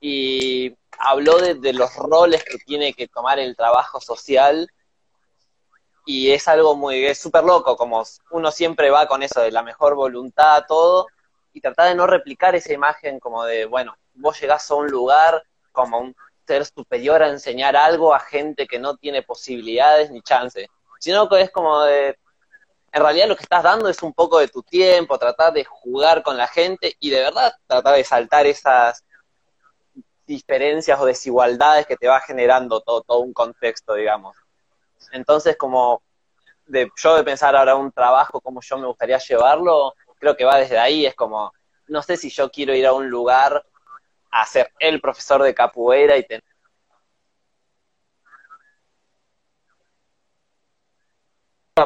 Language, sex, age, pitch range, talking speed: Spanish, male, 20-39, 125-160 Hz, 165 wpm